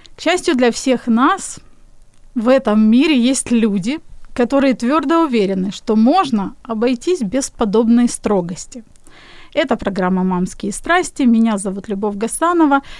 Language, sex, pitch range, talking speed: Ukrainian, female, 215-270 Hz, 125 wpm